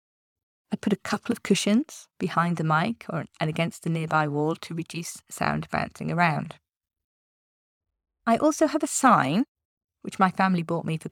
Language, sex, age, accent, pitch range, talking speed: English, female, 30-49, British, 155-205 Hz, 165 wpm